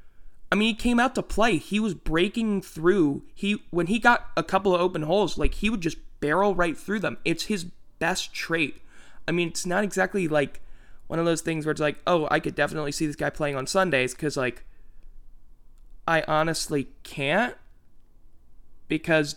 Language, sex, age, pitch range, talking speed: English, male, 20-39, 135-180 Hz, 190 wpm